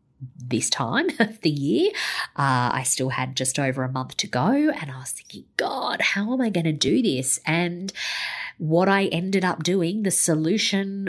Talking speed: 190 wpm